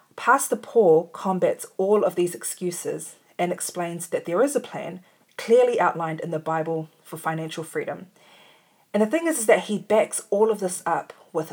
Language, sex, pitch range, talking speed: English, female, 165-200 Hz, 180 wpm